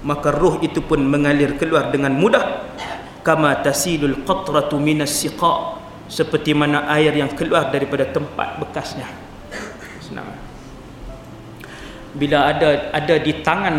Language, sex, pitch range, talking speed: English, male, 145-230 Hz, 95 wpm